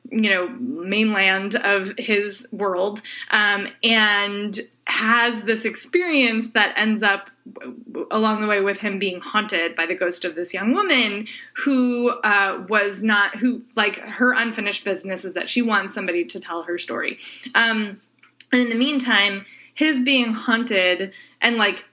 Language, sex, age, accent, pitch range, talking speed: English, female, 20-39, American, 190-235 Hz, 155 wpm